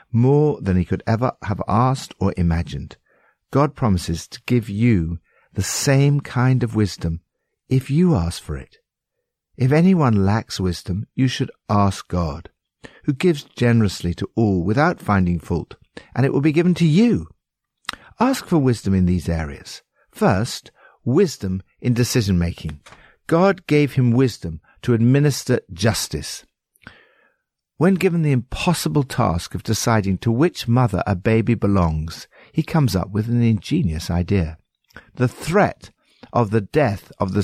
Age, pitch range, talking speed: 60-79, 90-130 Hz, 145 wpm